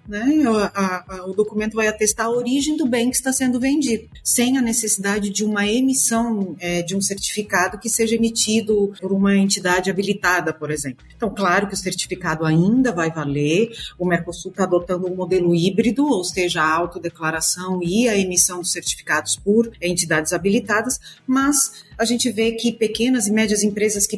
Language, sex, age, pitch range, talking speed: Portuguese, female, 40-59, 180-225 Hz, 180 wpm